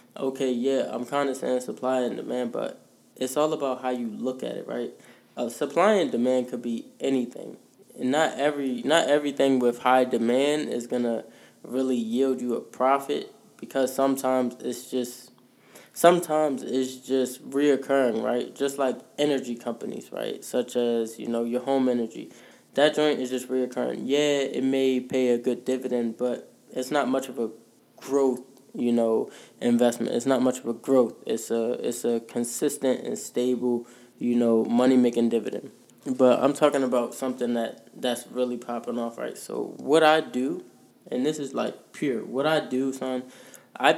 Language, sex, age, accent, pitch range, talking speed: English, male, 20-39, American, 120-135 Hz, 175 wpm